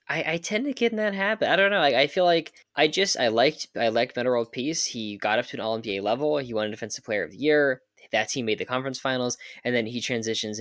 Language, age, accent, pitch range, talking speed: English, 10-29, American, 110-150 Hz, 285 wpm